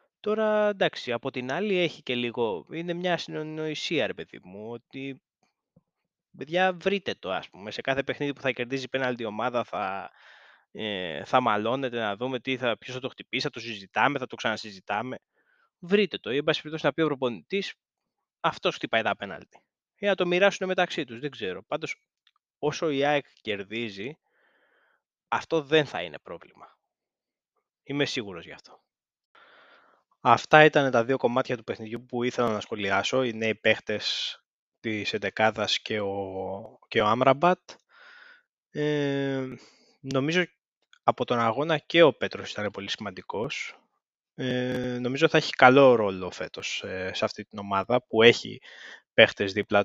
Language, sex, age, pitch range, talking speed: Greek, male, 20-39, 110-150 Hz, 150 wpm